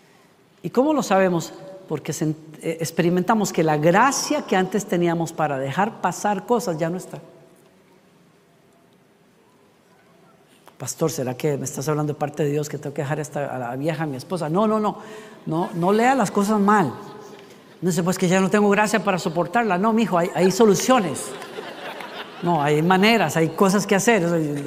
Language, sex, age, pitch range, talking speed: Spanish, female, 40-59, 165-210 Hz, 170 wpm